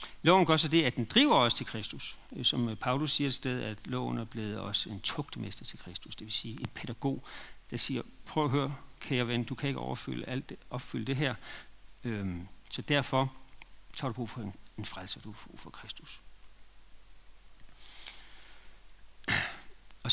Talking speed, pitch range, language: 180 wpm, 120-160 Hz, Danish